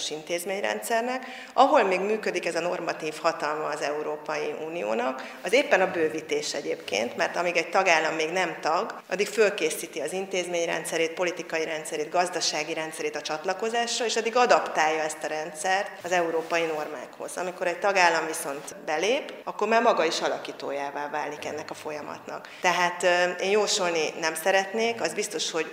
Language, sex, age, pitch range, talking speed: Hungarian, female, 30-49, 160-190 Hz, 150 wpm